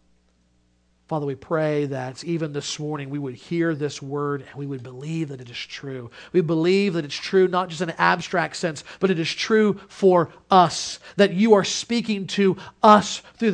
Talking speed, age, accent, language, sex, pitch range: 195 wpm, 40-59, American, English, male, 135-165 Hz